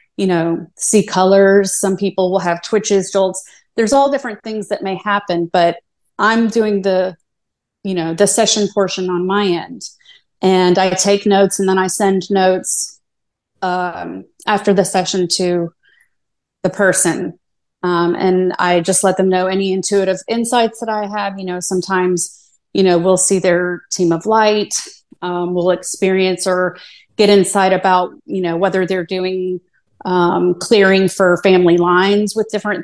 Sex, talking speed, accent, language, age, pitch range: female, 160 wpm, American, English, 30-49, 180-205 Hz